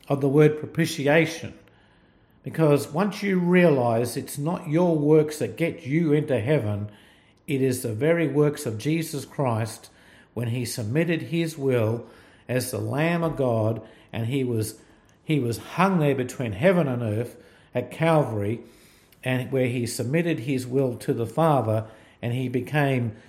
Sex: male